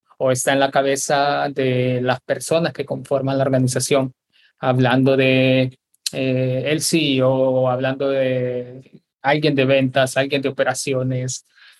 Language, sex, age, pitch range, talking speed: Spanish, male, 20-39, 130-145 Hz, 130 wpm